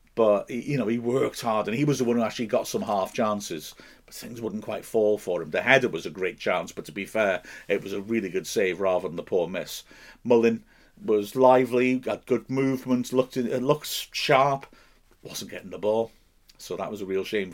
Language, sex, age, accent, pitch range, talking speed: English, male, 50-69, British, 95-125 Hz, 225 wpm